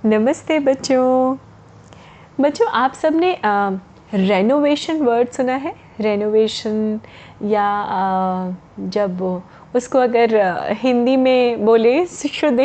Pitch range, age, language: 215-285 Hz, 20-39, Hindi